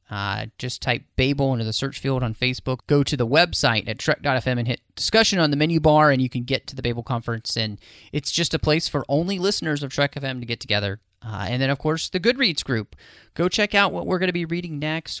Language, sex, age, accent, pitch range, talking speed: English, male, 30-49, American, 115-145 Hz, 245 wpm